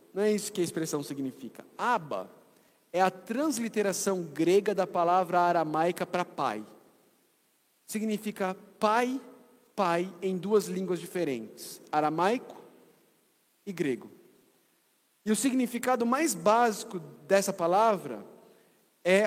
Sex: male